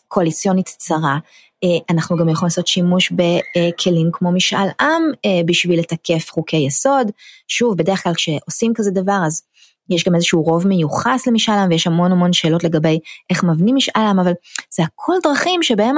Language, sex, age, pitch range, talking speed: Hebrew, female, 20-39, 170-230 Hz, 160 wpm